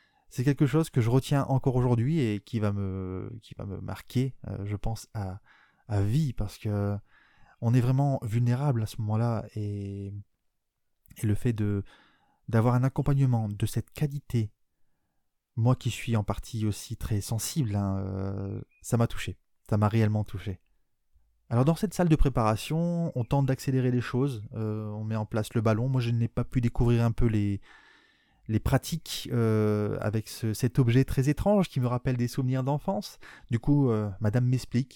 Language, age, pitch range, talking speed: French, 20-39, 105-130 Hz, 170 wpm